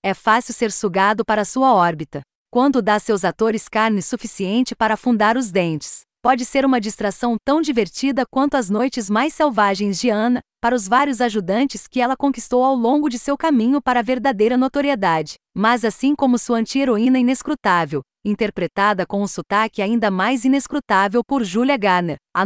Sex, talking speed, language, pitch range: female, 170 wpm, Portuguese, 205-255 Hz